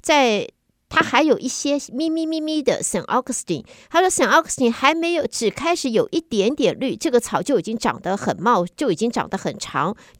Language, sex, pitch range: Chinese, female, 190-250 Hz